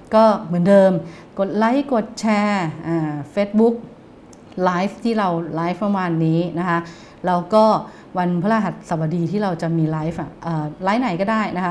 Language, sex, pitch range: English, female, 170-200 Hz